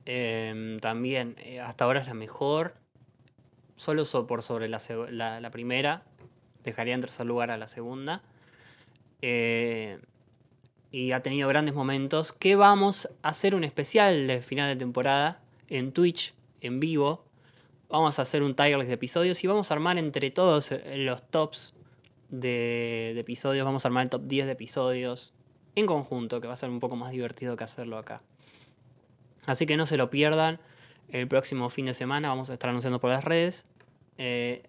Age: 20-39